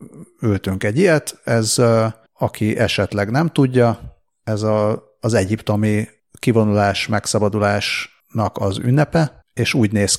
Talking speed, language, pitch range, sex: 110 wpm, Hungarian, 100-115 Hz, male